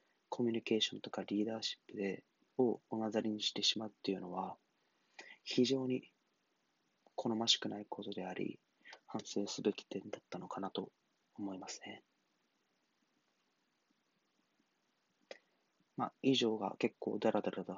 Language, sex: Japanese, male